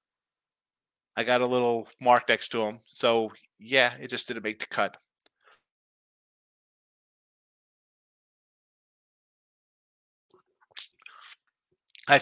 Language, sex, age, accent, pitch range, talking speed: English, male, 30-49, American, 110-140 Hz, 85 wpm